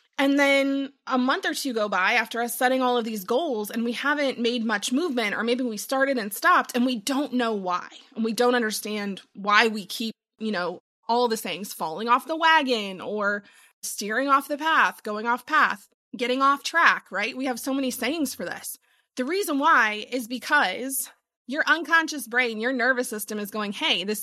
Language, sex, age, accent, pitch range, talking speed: English, female, 20-39, American, 220-270 Hz, 205 wpm